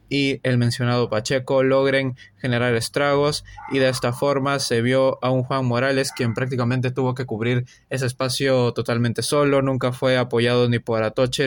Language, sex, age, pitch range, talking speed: Spanish, male, 20-39, 125-140 Hz, 165 wpm